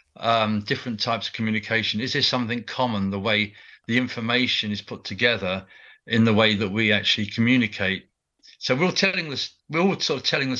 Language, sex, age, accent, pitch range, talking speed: English, male, 50-69, British, 105-125 Hz, 185 wpm